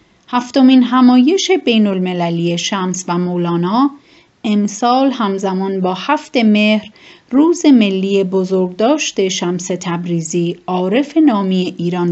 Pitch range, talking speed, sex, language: 185-245 Hz, 100 wpm, female, Persian